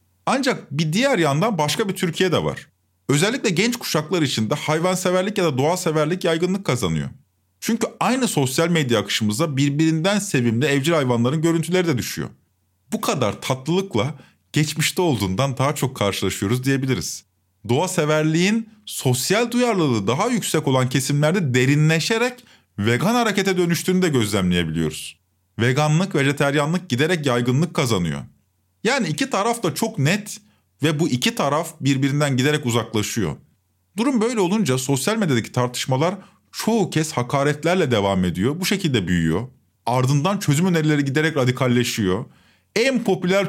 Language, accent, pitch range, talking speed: Turkish, native, 120-185 Hz, 130 wpm